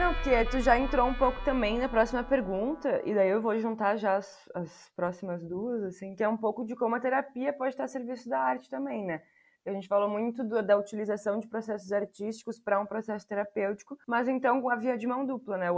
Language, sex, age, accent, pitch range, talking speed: Portuguese, female, 20-39, Brazilian, 185-230 Hz, 235 wpm